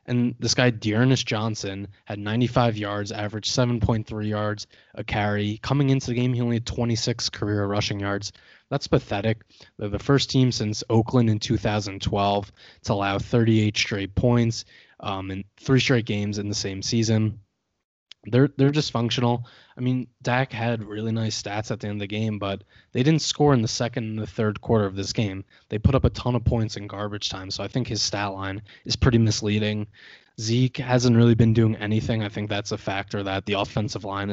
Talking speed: 195 wpm